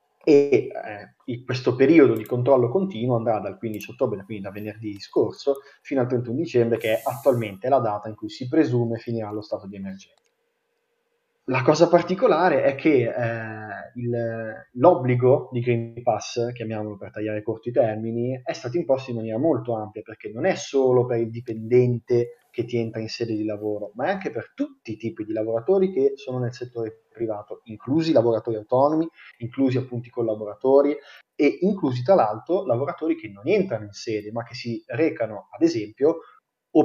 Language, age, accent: Italian, 30-49, native